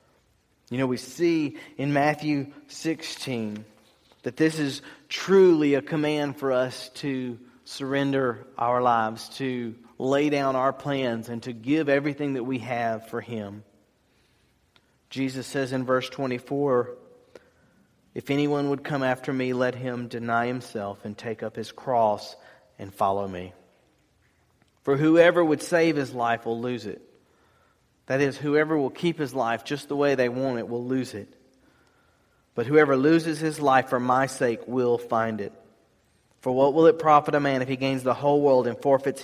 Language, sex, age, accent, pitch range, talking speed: English, male, 40-59, American, 115-140 Hz, 165 wpm